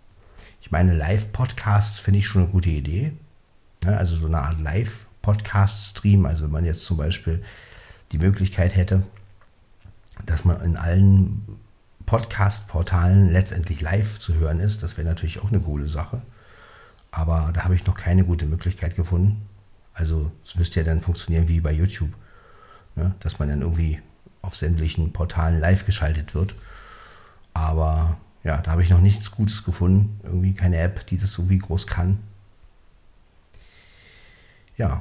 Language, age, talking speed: German, 50-69, 150 wpm